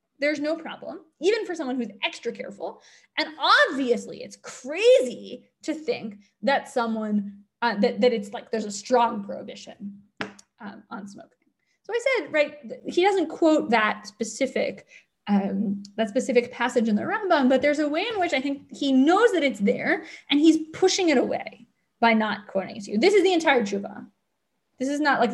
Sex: female